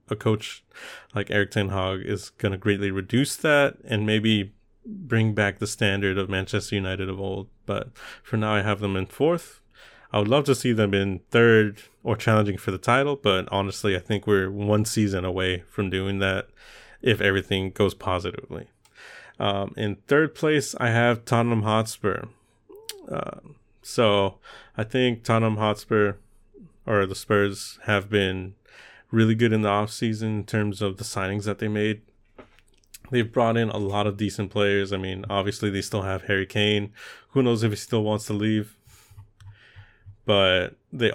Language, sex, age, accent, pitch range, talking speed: English, male, 30-49, American, 100-110 Hz, 170 wpm